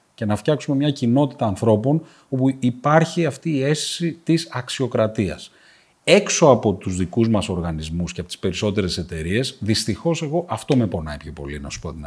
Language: Greek